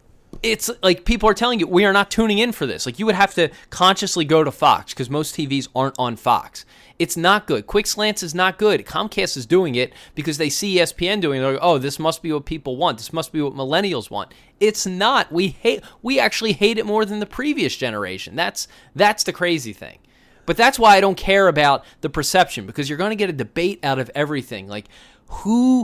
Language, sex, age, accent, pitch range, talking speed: English, male, 20-39, American, 140-205 Hz, 230 wpm